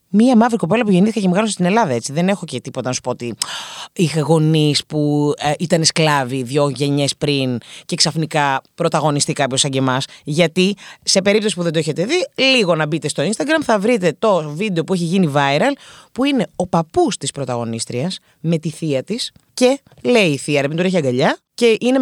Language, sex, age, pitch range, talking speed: Greek, female, 30-49, 145-220 Hz, 210 wpm